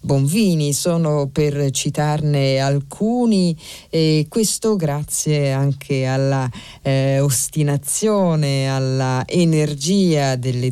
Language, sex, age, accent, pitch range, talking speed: Italian, female, 50-69, native, 135-160 Hz, 85 wpm